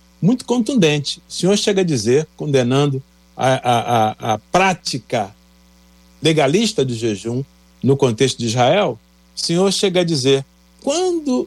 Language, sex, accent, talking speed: Portuguese, male, Brazilian, 135 wpm